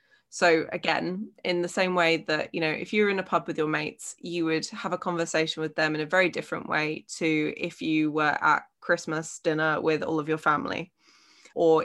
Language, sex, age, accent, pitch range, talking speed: English, female, 20-39, British, 160-180 Hz, 215 wpm